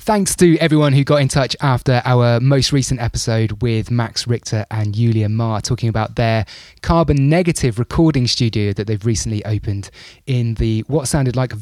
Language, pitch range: English, 110-135 Hz